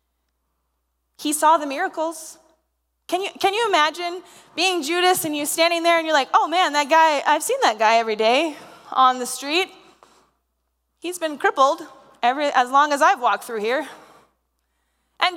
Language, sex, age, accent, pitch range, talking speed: English, female, 20-39, American, 250-350 Hz, 170 wpm